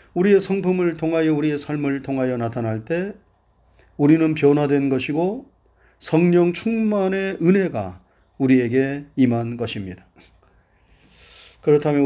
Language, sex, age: Korean, male, 30-49